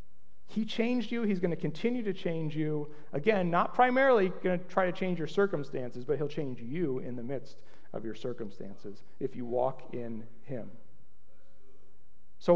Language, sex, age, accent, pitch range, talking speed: English, male, 40-59, American, 130-215 Hz, 170 wpm